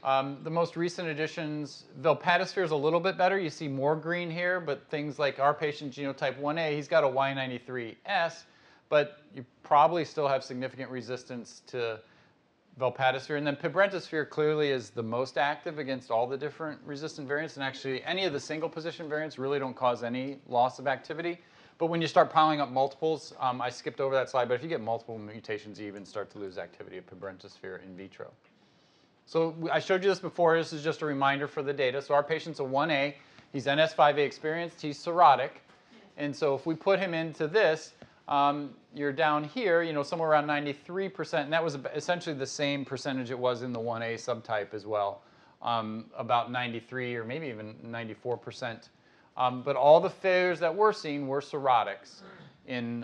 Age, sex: 30-49, male